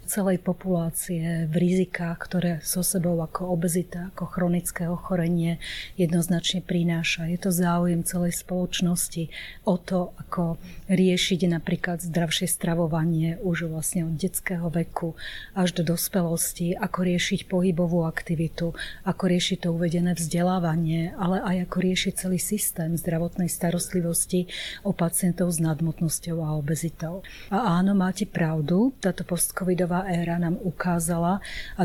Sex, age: female, 30-49